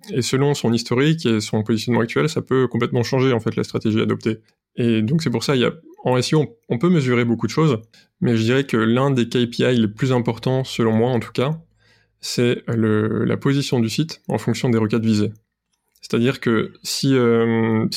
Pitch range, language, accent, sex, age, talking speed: 115-135 Hz, French, French, male, 20-39, 210 wpm